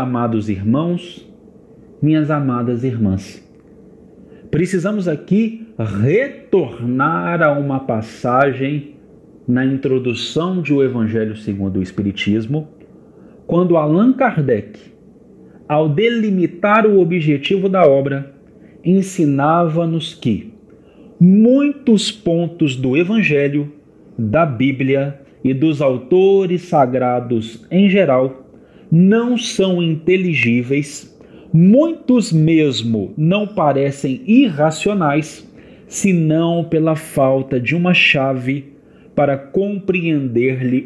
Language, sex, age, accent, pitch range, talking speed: Portuguese, male, 40-59, Brazilian, 130-185 Hz, 85 wpm